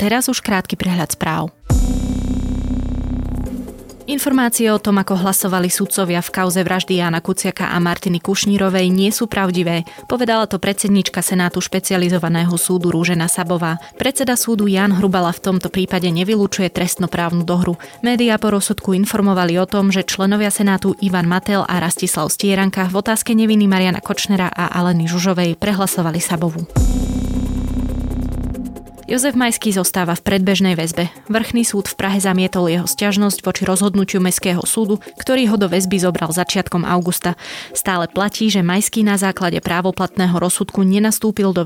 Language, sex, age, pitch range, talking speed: Slovak, female, 20-39, 175-205 Hz, 140 wpm